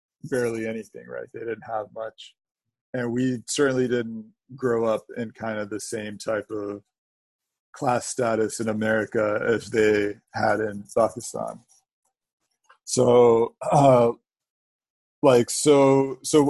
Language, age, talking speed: English, 40-59, 125 wpm